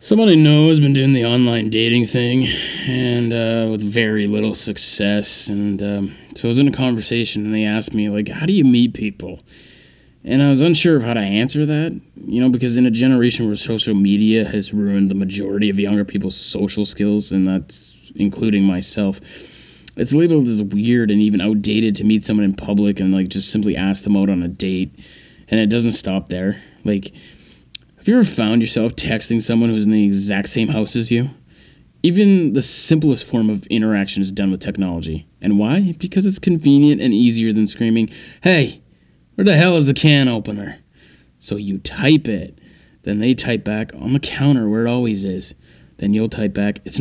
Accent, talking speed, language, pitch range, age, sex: American, 200 wpm, English, 100-130 Hz, 20-39, male